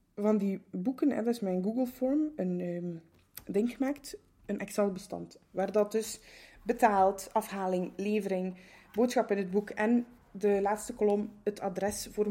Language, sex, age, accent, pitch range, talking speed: English, female, 20-39, Dutch, 190-250 Hz, 145 wpm